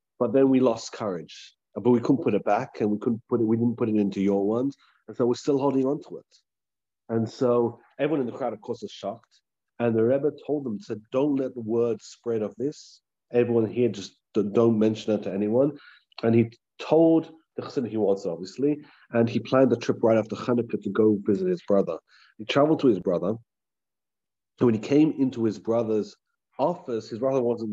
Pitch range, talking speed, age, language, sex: 105-125 Hz, 215 wpm, 30-49, English, male